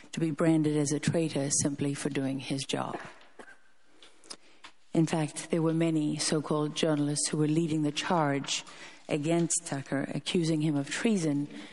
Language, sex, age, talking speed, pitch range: English, female, 50-69, 150 wpm, 140-160 Hz